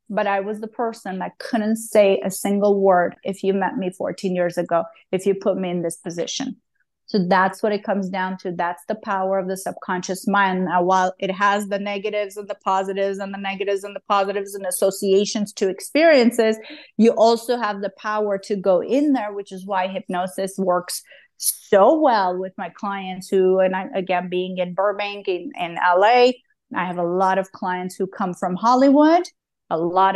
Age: 30-49